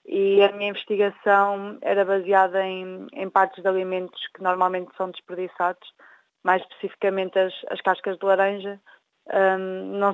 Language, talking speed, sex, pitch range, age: Portuguese, 135 wpm, female, 185-210 Hz, 20-39